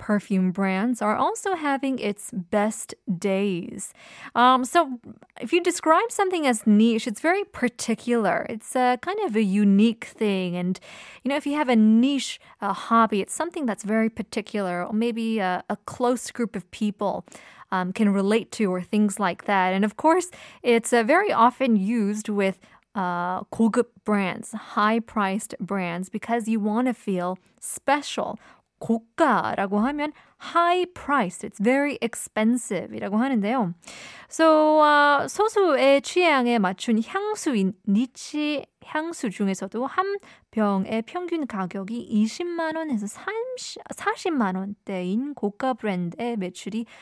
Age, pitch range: 20-39, 205-275 Hz